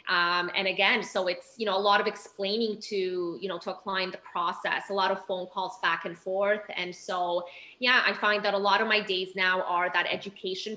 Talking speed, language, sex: 235 wpm, English, female